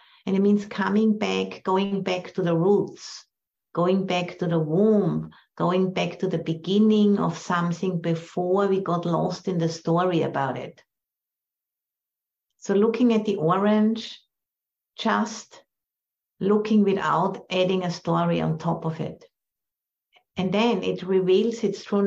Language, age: English, 60-79